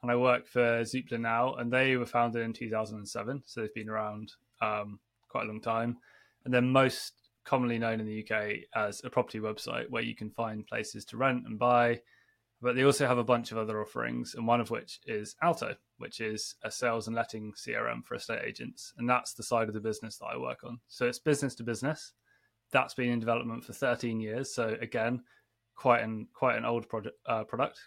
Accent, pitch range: British, 110-125 Hz